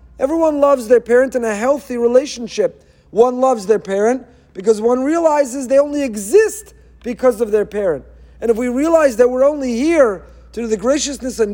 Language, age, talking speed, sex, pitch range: English, 40-59, 175 wpm, male, 225-290 Hz